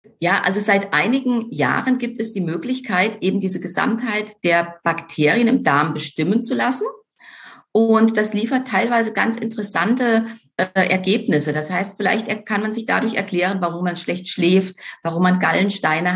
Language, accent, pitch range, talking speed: German, German, 175-225 Hz, 155 wpm